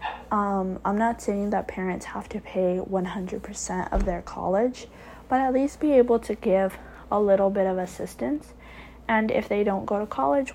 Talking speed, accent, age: 180 wpm, American, 20-39